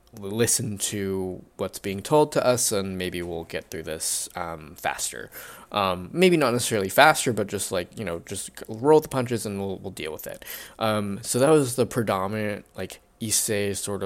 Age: 20-39